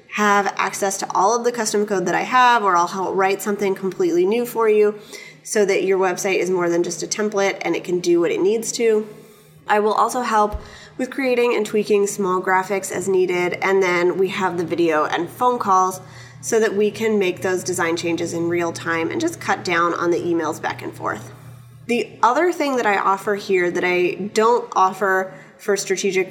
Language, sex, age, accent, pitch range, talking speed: English, female, 20-39, American, 180-215 Hz, 210 wpm